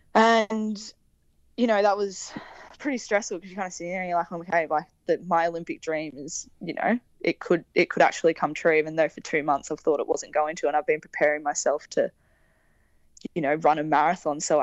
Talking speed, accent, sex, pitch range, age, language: 235 wpm, Australian, female, 155-185 Hz, 10-29, English